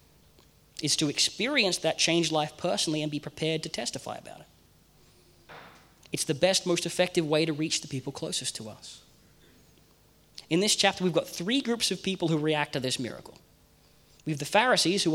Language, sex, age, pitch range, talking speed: English, male, 20-39, 145-190 Hz, 180 wpm